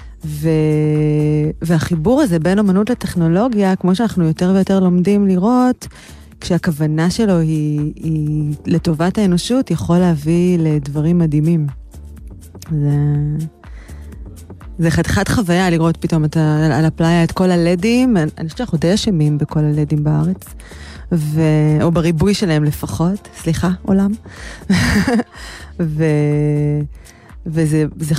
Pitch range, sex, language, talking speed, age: 155-210 Hz, female, Hebrew, 110 wpm, 20-39